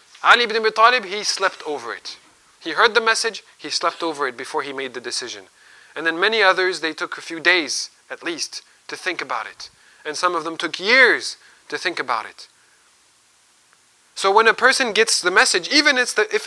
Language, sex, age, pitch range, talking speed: English, male, 30-49, 160-235 Hz, 210 wpm